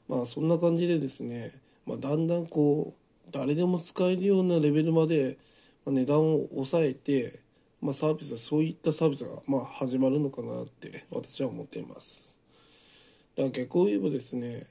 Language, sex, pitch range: Japanese, male, 125-155 Hz